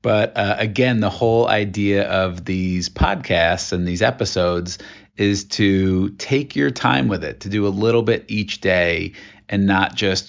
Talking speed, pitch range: 170 wpm, 95-105 Hz